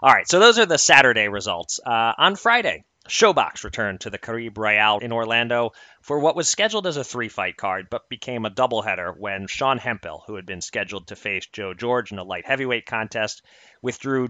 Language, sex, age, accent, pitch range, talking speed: English, male, 30-49, American, 100-135 Hz, 200 wpm